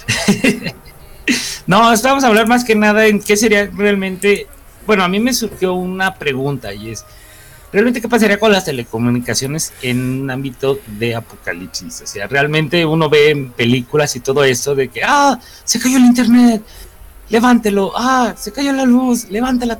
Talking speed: 165 wpm